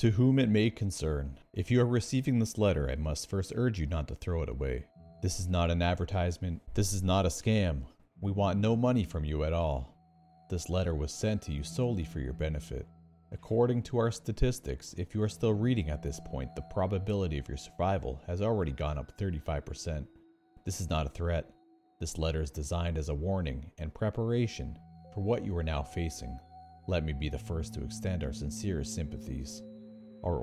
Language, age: English, 40-59